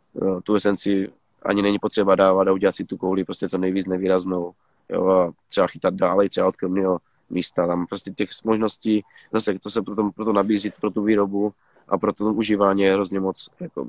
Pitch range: 95-110 Hz